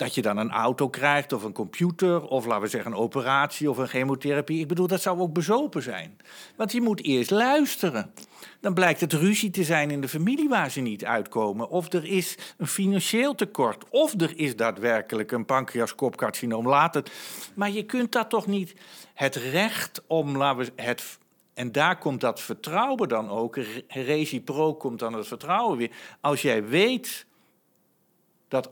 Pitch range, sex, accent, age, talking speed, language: 135-200 Hz, male, Dutch, 50-69, 180 wpm, Dutch